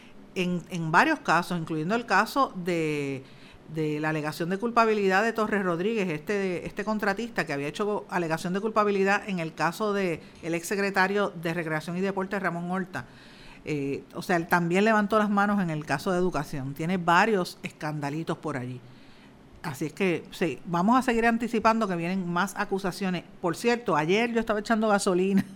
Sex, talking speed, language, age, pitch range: female, 170 wpm, Spanish, 50-69, 170-205 Hz